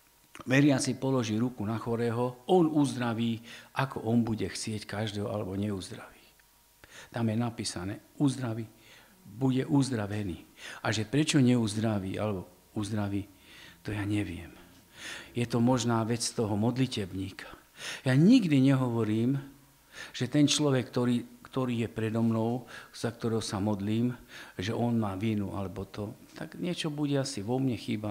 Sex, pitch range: male, 105-125 Hz